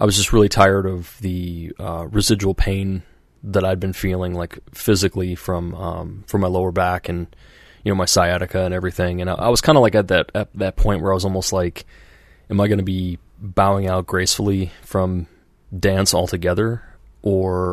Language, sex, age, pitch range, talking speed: English, male, 20-39, 90-100 Hz, 195 wpm